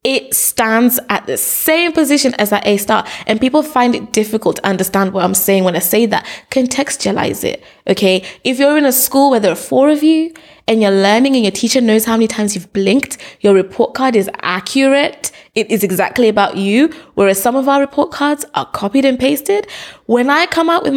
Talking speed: 215 wpm